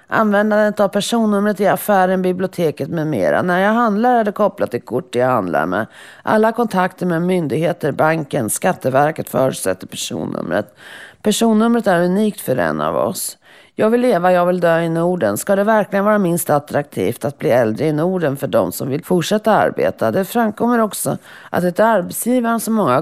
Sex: female